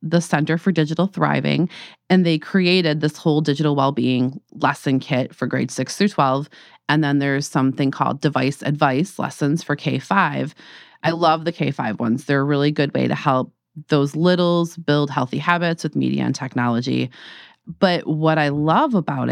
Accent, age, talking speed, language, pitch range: American, 30-49, 170 wpm, English, 145-170 Hz